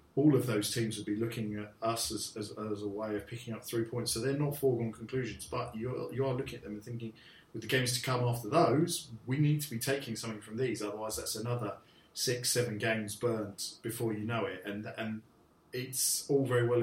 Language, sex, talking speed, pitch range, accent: English, male, 230 wpm, 110-125 Hz, British